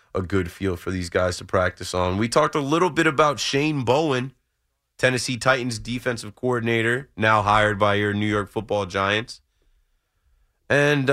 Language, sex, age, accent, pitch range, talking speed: English, male, 20-39, American, 100-125 Hz, 160 wpm